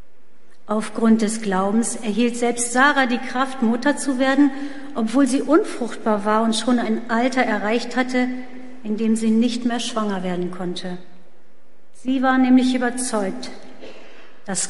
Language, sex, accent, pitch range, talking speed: German, female, German, 215-255 Hz, 140 wpm